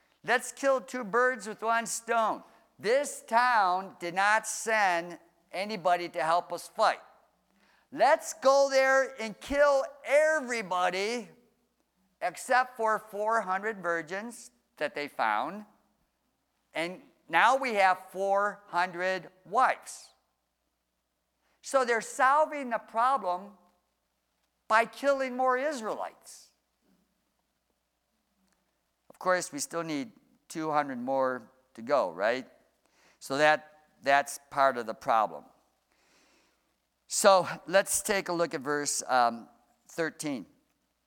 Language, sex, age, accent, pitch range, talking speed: English, male, 50-69, American, 150-230 Hz, 100 wpm